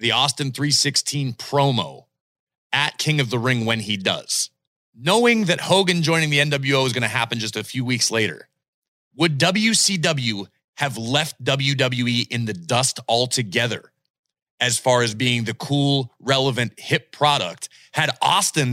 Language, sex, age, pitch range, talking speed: English, male, 30-49, 125-170 Hz, 150 wpm